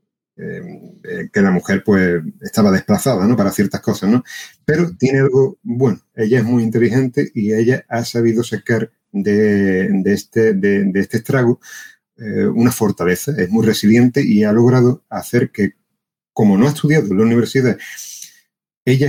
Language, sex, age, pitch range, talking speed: Spanish, male, 40-59, 110-165 Hz, 165 wpm